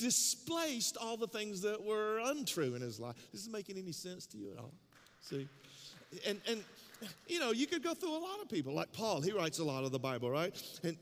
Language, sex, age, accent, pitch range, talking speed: English, male, 40-59, American, 155-230 Hz, 235 wpm